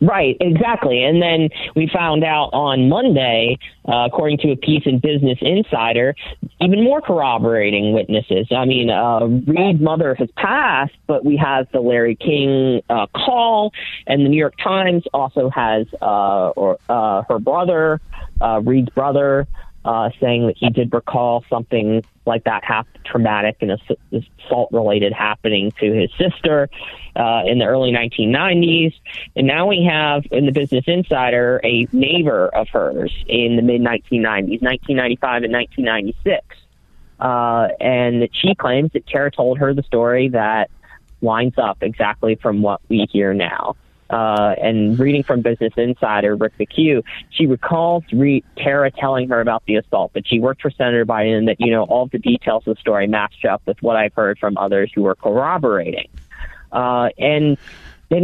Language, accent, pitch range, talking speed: English, American, 115-155 Hz, 160 wpm